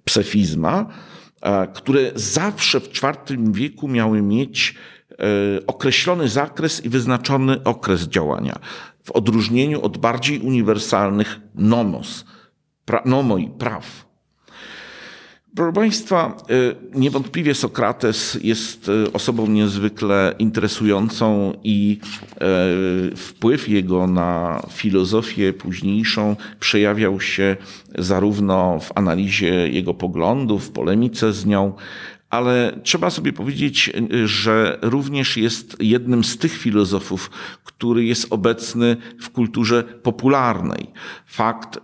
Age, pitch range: 50-69, 95-120 Hz